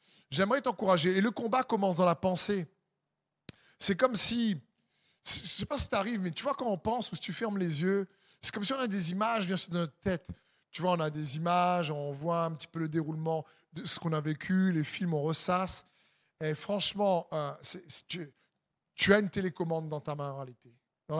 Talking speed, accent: 220 wpm, French